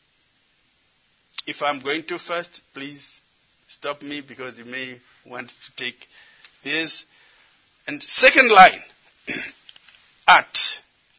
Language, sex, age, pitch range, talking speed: English, male, 50-69, 145-195 Hz, 100 wpm